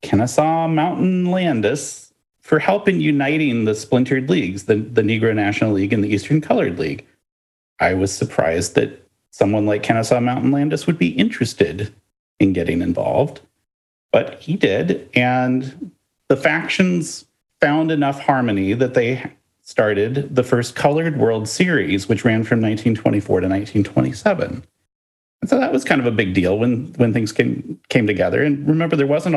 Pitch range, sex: 100-145 Hz, male